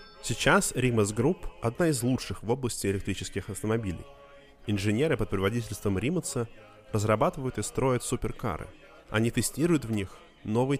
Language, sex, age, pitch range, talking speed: Russian, male, 20-39, 95-125 Hz, 130 wpm